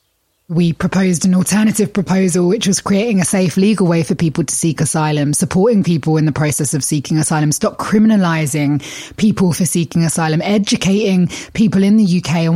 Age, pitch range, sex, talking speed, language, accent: 20-39, 160-185 Hz, female, 175 wpm, English, British